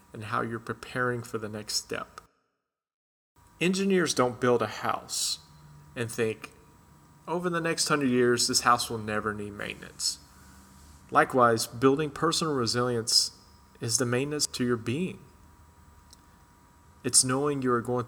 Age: 30-49